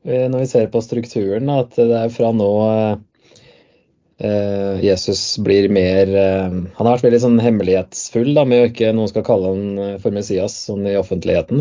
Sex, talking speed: male, 170 wpm